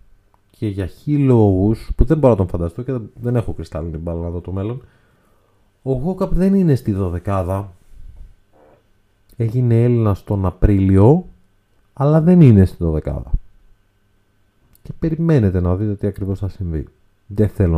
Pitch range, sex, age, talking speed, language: 90-115 Hz, male, 30-49, 140 wpm, Greek